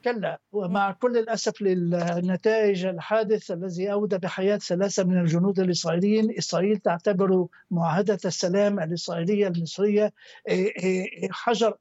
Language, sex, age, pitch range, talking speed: Arabic, male, 60-79, 195-225 Hz, 100 wpm